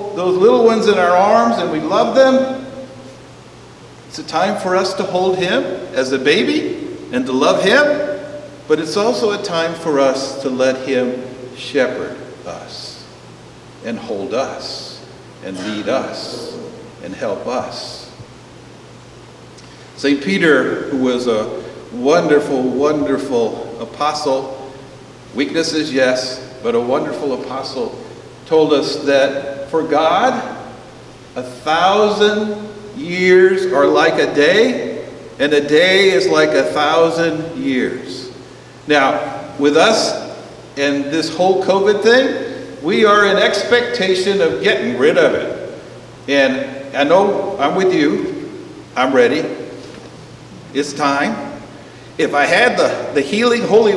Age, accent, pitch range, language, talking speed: 50-69, American, 135-205 Hz, English, 125 wpm